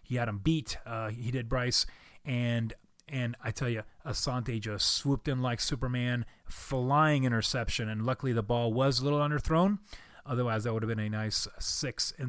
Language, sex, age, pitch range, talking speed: English, male, 30-49, 115-135 Hz, 185 wpm